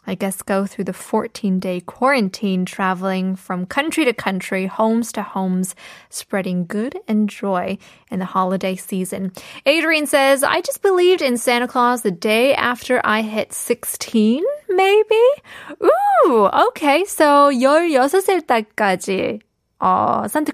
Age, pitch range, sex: 20-39, 195-270 Hz, female